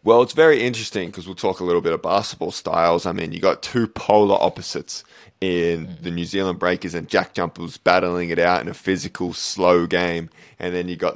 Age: 20-39